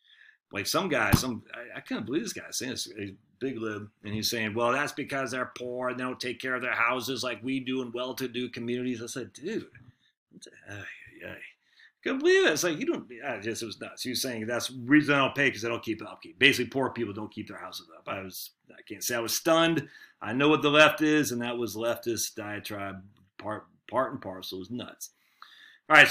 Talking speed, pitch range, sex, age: 240 wpm, 120-155 Hz, male, 40-59